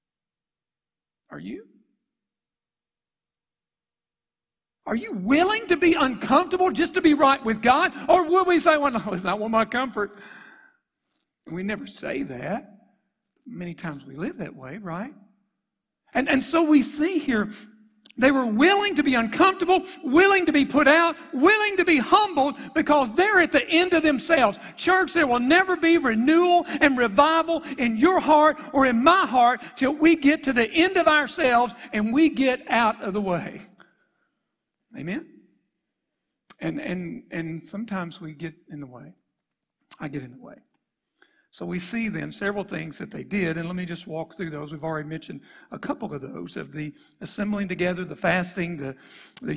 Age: 60-79